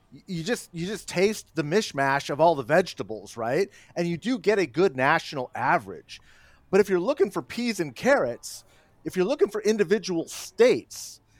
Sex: male